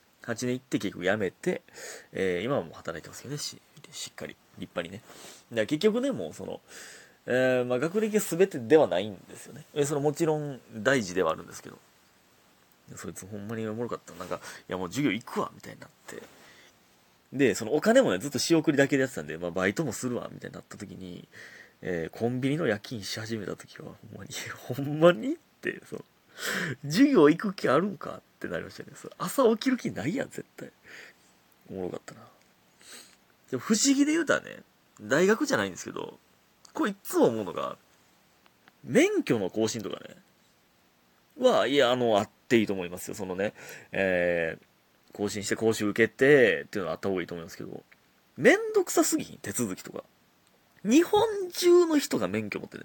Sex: male